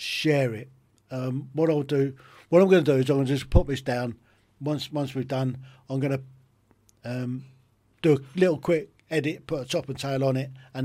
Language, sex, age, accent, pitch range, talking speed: English, male, 50-69, British, 120-145 Hz, 225 wpm